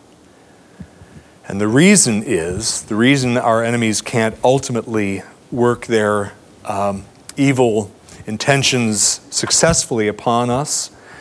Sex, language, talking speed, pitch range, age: male, English, 95 wpm, 105-150 Hz, 40-59